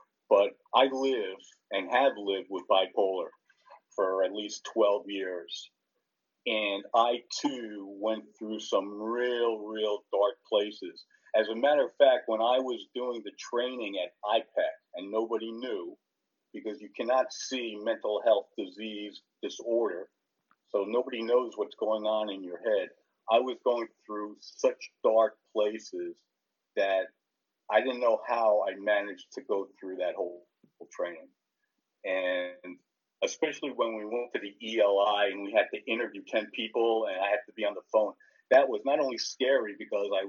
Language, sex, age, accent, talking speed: English, male, 50-69, American, 160 wpm